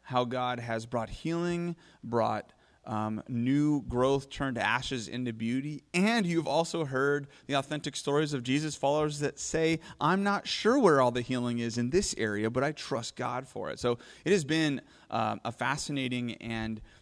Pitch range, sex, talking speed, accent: 120-145 Hz, male, 175 wpm, American